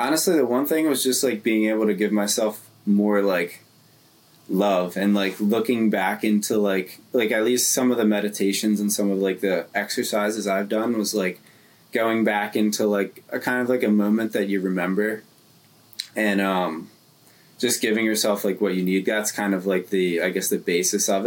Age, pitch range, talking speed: 20-39, 95-110 Hz, 200 wpm